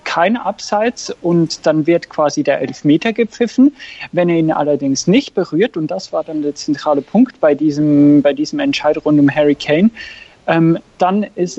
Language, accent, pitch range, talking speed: German, German, 150-190 Hz, 175 wpm